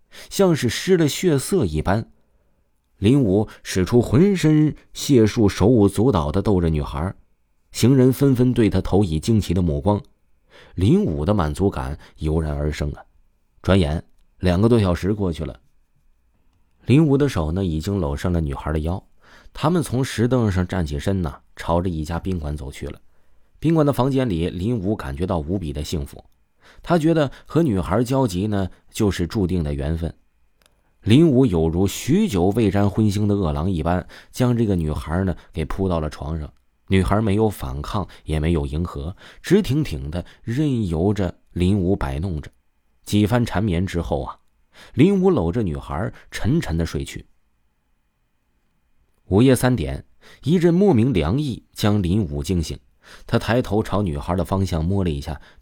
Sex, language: male, Chinese